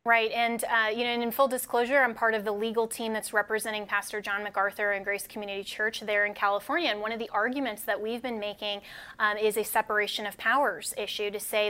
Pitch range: 205-240 Hz